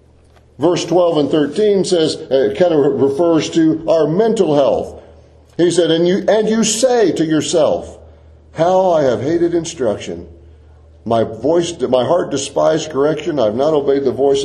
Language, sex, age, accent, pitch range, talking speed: English, male, 50-69, American, 105-170 Hz, 160 wpm